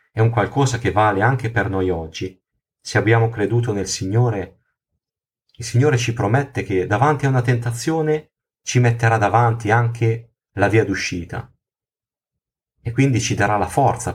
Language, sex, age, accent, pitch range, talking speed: Italian, male, 30-49, native, 100-120 Hz, 155 wpm